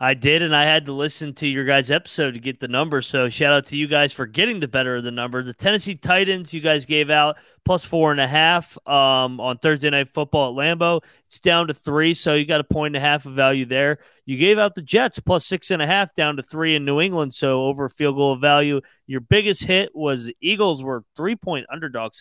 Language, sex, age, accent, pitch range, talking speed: English, male, 30-49, American, 130-155 Hz, 225 wpm